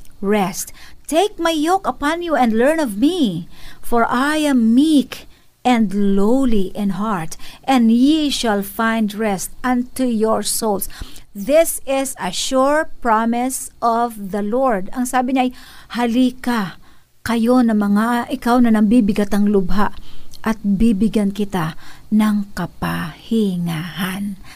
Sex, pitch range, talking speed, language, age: female, 200-265 Hz, 125 wpm, Filipino, 50-69